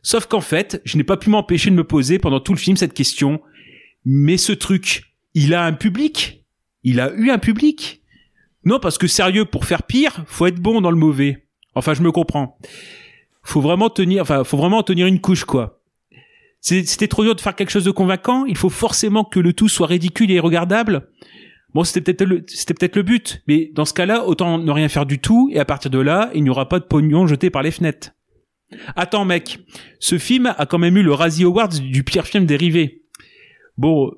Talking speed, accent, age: 220 wpm, French, 30-49